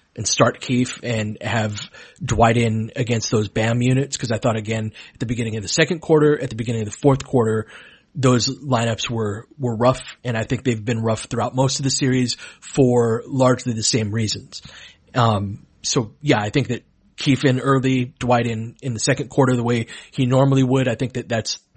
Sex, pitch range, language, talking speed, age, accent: male, 115-140 Hz, English, 205 wpm, 30-49, American